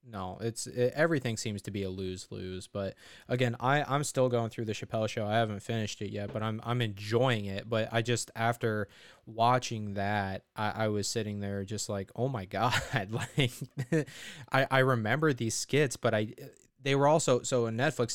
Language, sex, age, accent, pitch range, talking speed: English, male, 20-39, American, 105-125 Hz, 200 wpm